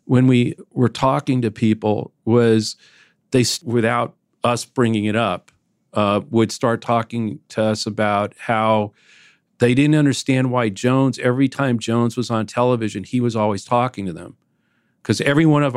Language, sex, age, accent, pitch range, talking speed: English, male, 40-59, American, 105-125 Hz, 160 wpm